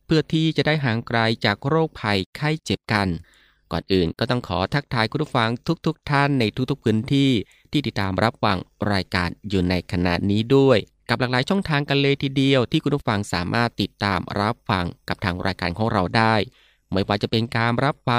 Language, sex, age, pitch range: Thai, male, 20-39, 100-135 Hz